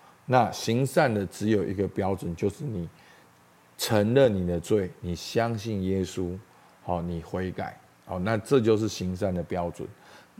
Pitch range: 95-125 Hz